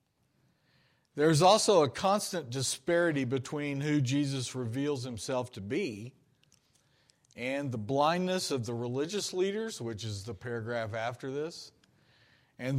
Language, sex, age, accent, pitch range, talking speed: English, male, 50-69, American, 115-150 Hz, 120 wpm